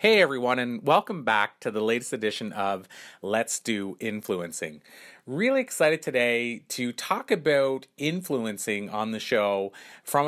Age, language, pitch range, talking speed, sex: 30-49, English, 110-135 Hz, 140 wpm, male